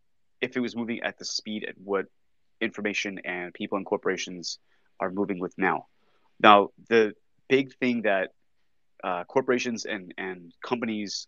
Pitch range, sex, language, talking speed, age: 95-115 Hz, male, English, 150 wpm, 30-49